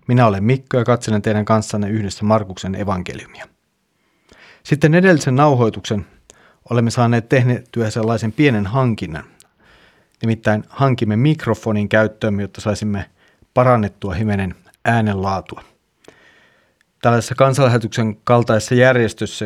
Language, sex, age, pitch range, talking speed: Finnish, male, 30-49, 105-125 Hz, 100 wpm